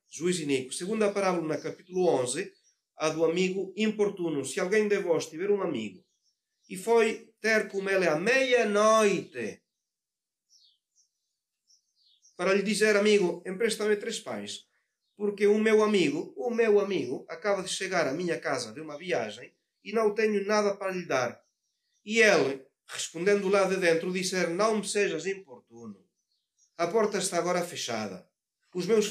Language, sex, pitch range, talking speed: Portuguese, male, 155-205 Hz, 150 wpm